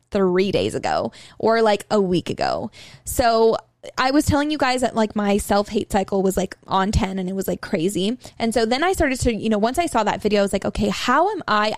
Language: English